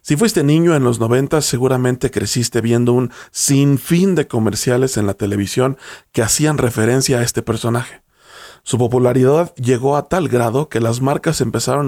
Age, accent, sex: 40-59, Mexican, male